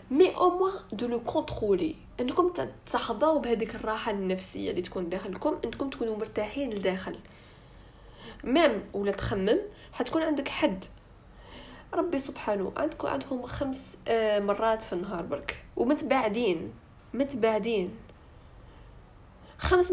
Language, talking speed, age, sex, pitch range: Arabic, 110 wpm, 10-29, female, 210-295 Hz